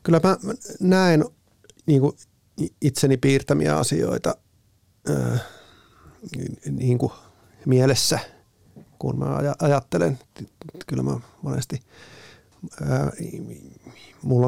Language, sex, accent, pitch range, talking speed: Finnish, male, native, 115-145 Hz, 80 wpm